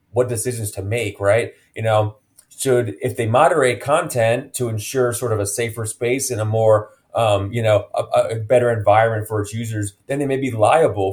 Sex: male